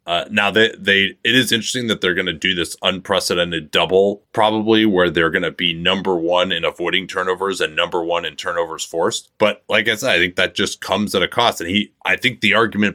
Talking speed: 230 wpm